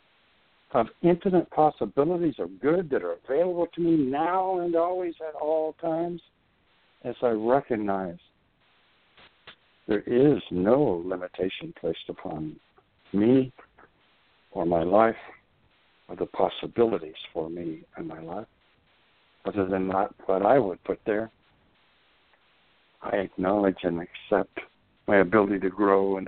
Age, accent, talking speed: 60-79, American, 125 wpm